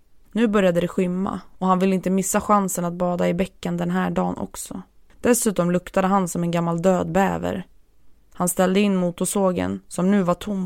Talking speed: 190 wpm